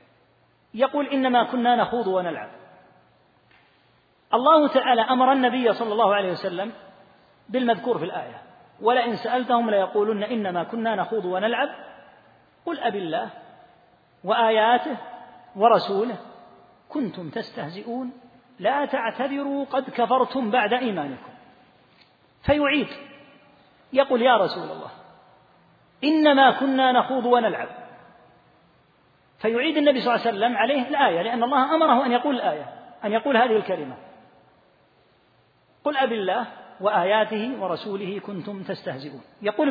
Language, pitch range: Arabic, 210-265 Hz